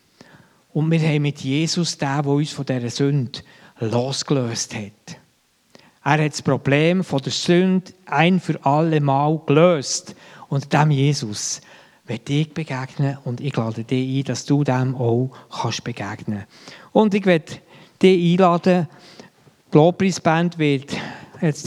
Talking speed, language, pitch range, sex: 140 wpm, German, 140-175 Hz, male